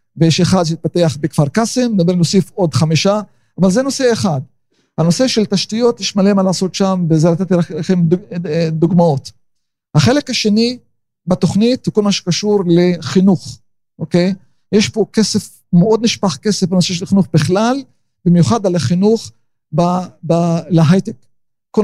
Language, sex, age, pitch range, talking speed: Hebrew, male, 50-69, 165-200 Hz, 135 wpm